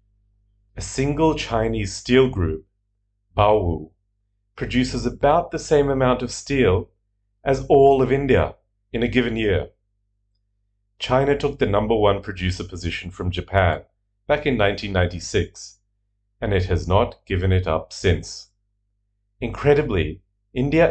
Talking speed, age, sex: 125 wpm, 40-59, male